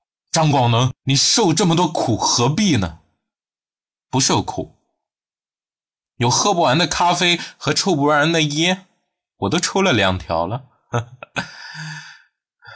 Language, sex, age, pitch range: Chinese, male, 20-39, 105-160 Hz